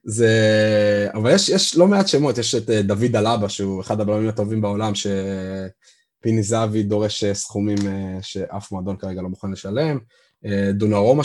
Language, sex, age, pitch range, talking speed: Hebrew, male, 20-39, 100-120 Hz, 160 wpm